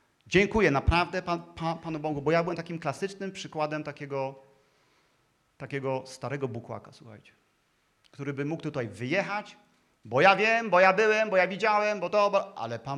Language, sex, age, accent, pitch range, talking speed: Polish, male, 40-59, native, 140-190 Hz, 155 wpm